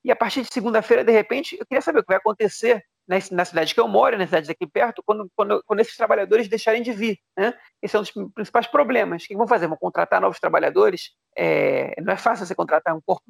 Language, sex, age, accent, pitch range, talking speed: Portuguese, male, 40-59, Brazilian, 185-235 Hz, 240 wpm